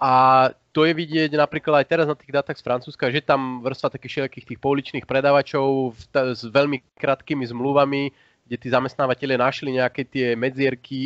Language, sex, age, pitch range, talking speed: Slovak, male, 30-49, 115-145 Hz, 175 wpm